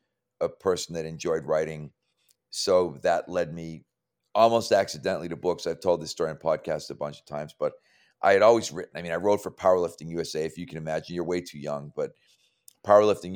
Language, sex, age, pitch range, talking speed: English, male, 40-59, 80-95 Hz, 200 wpm